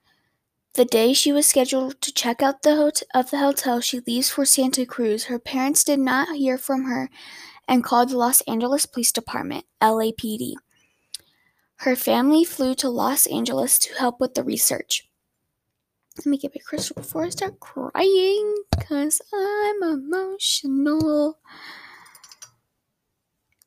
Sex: female